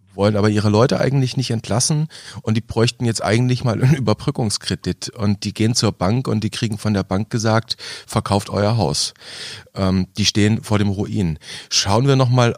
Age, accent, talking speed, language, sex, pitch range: 30-49, German, 185 wpm, German, male, 100-120 Hz